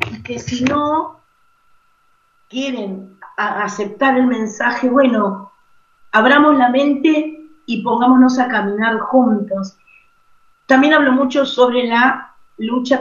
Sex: female